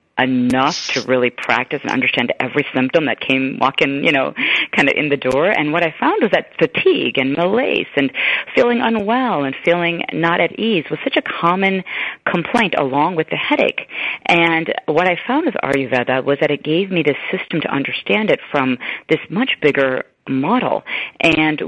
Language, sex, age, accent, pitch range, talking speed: English, female, 40-59, American, 130-170 Hz, 185 wpm